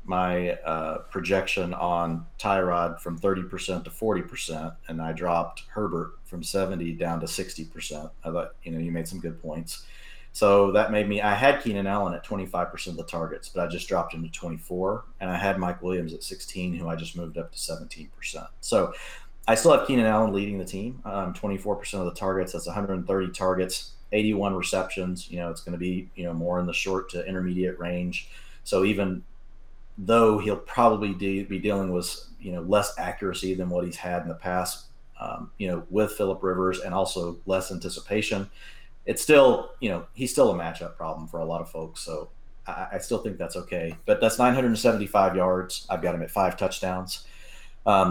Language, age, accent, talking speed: English, 30-49, American, 195 wpm